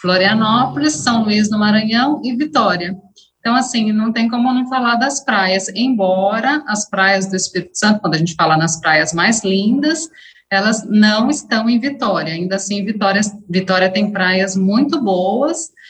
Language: Portuguese